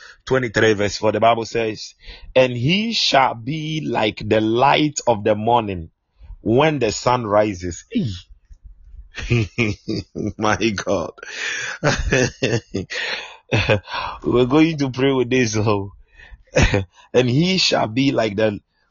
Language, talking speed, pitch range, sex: English, 115 wpm, 105-130 Hz, male